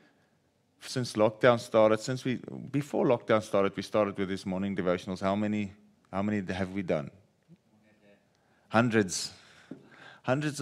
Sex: male